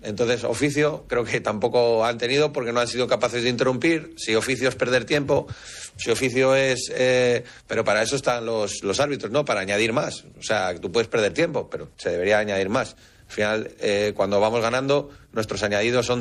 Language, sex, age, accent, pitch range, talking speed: Spanish, male, 40-59, Spanish, 115-140 Hz, 200 wpm